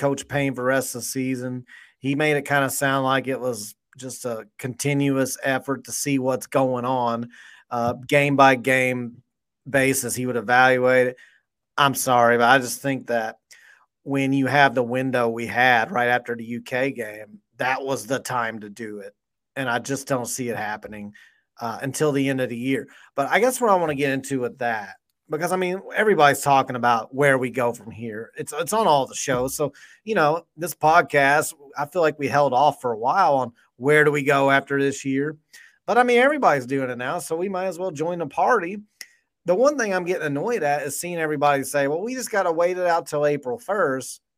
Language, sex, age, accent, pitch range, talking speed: English, male, 30-49, American, 125-160 Hz, 220 wpm